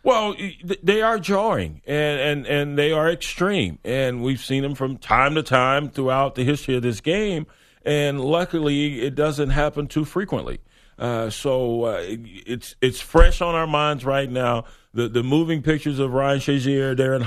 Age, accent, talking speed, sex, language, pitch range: 40-59, American, 175 wpm, male, English, 130-170 Hz